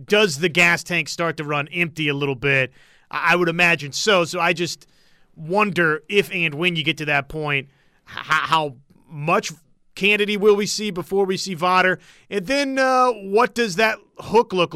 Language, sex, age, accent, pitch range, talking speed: English, male, 30-49, American, 160-195 Hz, 185 wpm